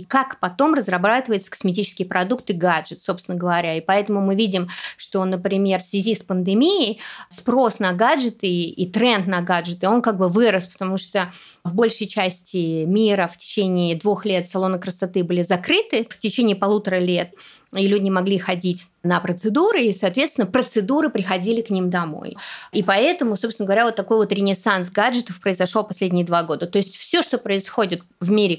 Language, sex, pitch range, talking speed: Russian, female, 180-210 Hz, 170 wpm